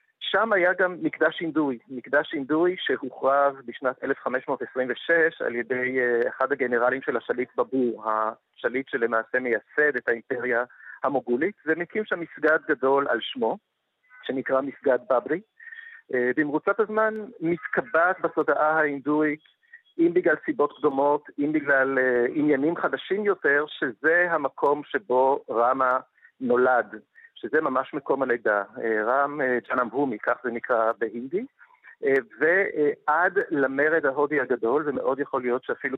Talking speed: 115 wpm